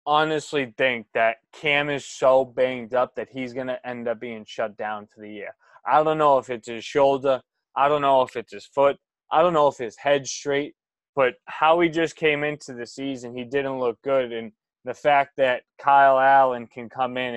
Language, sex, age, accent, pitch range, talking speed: English, male, 20-39, American, 125-145 Hz, 215 wpm